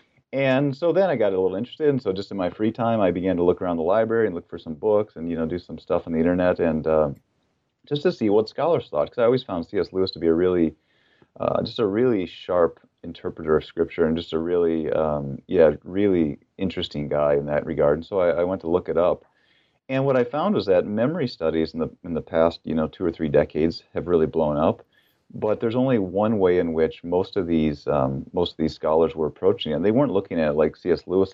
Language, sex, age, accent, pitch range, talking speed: English, male, 30-49, American, 80-105 Hz, 255 wpm